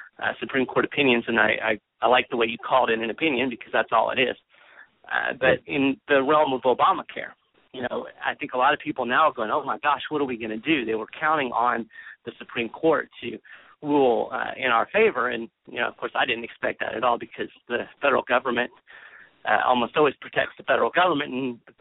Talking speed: 235 wpm